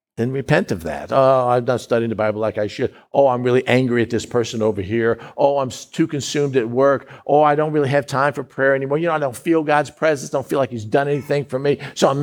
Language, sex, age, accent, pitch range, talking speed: English, male, 50-69, American, 120-160 Hz, 265 wpm